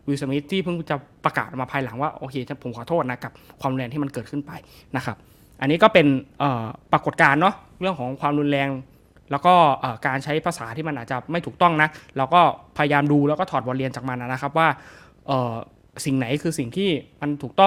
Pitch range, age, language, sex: 130-160 Hz, 20-39, Thai, male